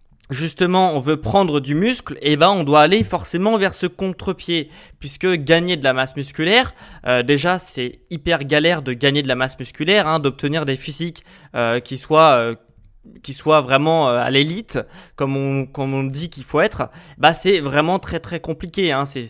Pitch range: 135-175 Hz